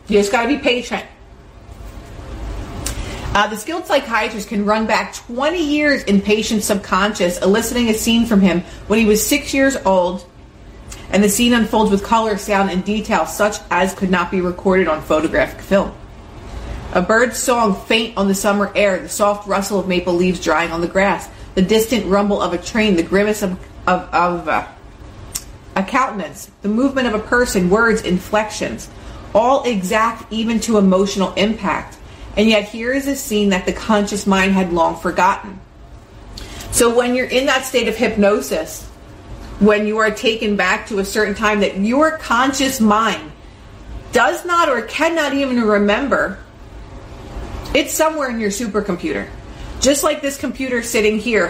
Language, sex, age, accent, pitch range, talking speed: English, female, 30-49, American, 190-235 Hz, 165 wpm